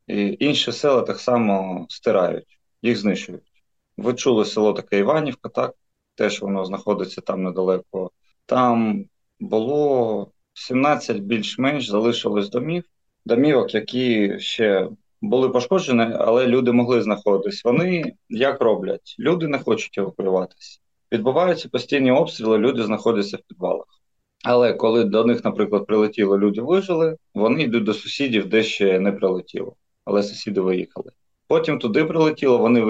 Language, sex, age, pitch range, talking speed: Ukrainian, male, 30-49, 100-125 Hz, 130 wpm